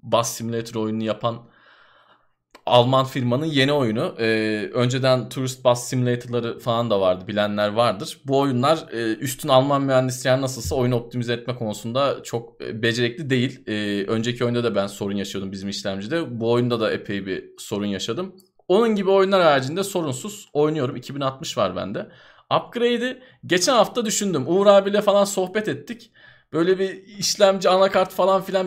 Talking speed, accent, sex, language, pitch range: 150 wpm, native, male, Turkish, 120-185 Hz